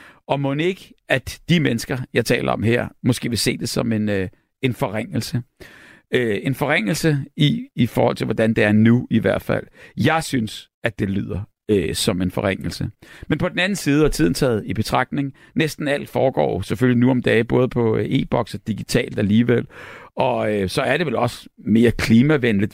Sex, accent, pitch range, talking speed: male, native, 110-135 Hz, 185 wpm